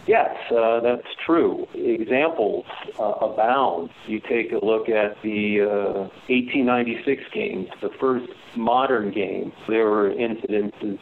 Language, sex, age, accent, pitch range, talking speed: English, male, 50-69, American, 105-125 Hz, 125 wpm